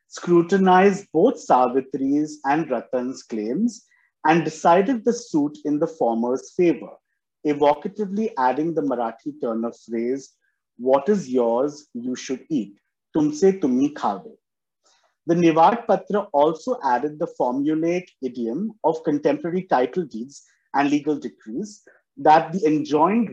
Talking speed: 125 wpm